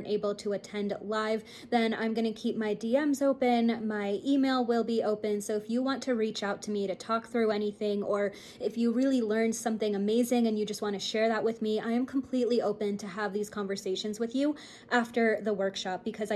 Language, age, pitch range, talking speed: English, 20-39, 210-245 Hz, 215 wpm